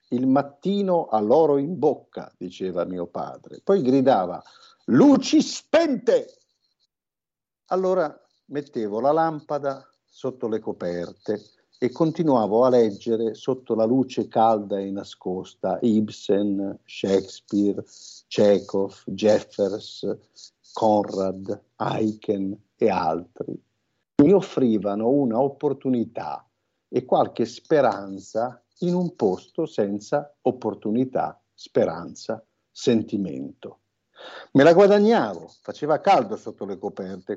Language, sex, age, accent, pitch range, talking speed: Italian, male, 50-69, native, 100-140 Hz, 95 wpm